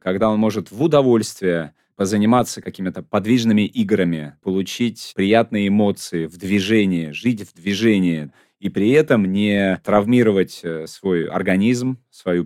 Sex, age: male, 30-49